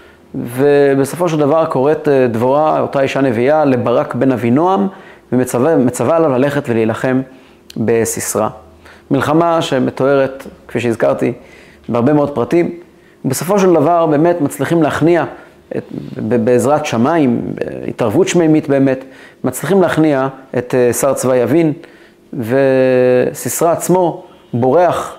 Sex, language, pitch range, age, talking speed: male, Hebrew, 125-165 Hz, 30-49, 105 wpm